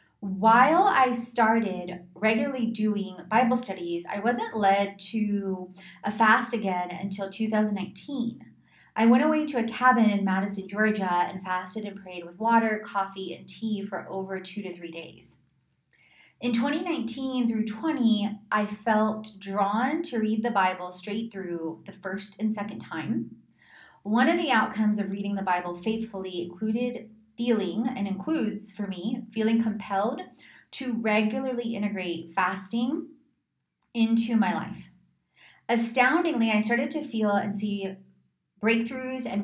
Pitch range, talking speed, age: 190-230 Hz, 140 wpm, 20-39